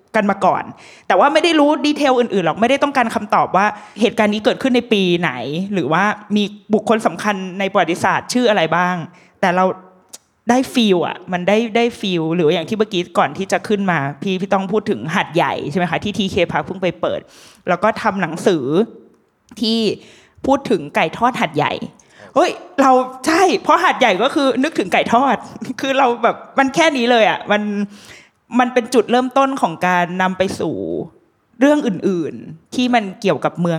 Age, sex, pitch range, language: 20-39, female, 180-250 Hz, Thai